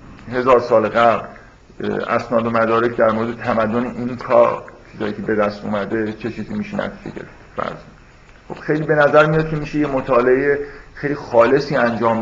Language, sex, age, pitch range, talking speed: Persian, male, 50-69, 110-140 Hz, 150 wpm